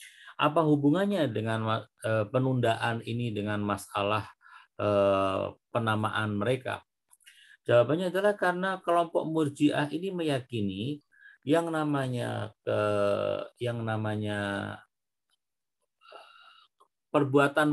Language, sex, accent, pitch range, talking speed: Indonesian, male, native, 110-150 Hz, 75 wpm